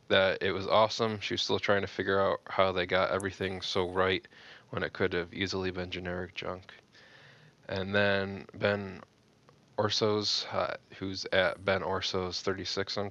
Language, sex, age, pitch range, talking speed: English, male, 20-39, 95-105 Hz, 160 wpm